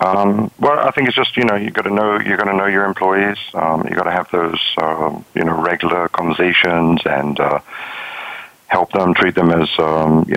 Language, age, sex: English, 50-69, male